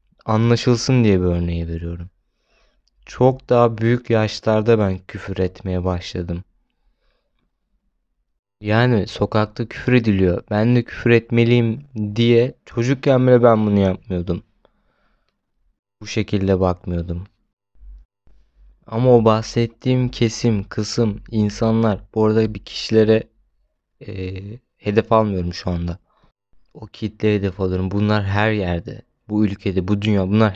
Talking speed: 110 wpm